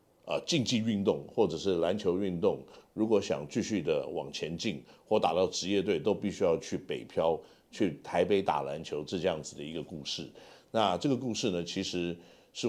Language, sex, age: Chinese, male, 50-69